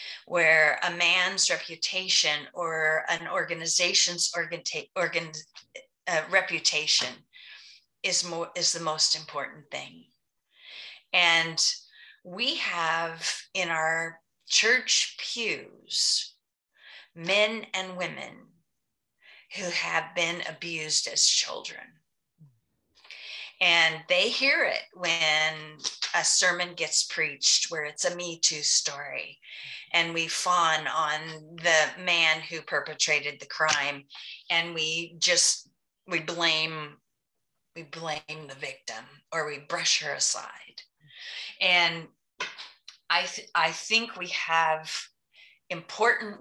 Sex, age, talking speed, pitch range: female, 40-59, 105 wpm, 155-180 Hz